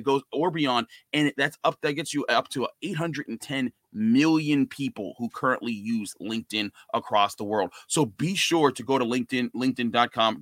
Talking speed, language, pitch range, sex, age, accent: 165 wpm, English, 125-145 Hz, male, 30-49, American